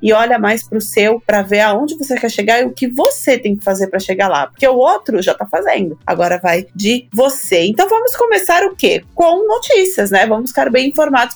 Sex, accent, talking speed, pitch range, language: female, Brazilian, 230 wpm, 205-260 Hz, Portuguese